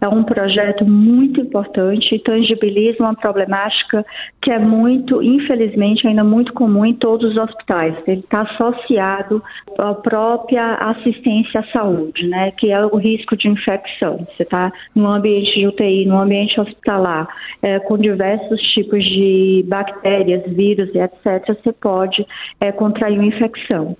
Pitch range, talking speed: 200-235 Hz, 150 wpm